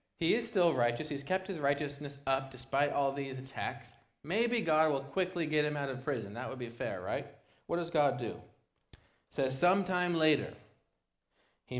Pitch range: 115-150 Hz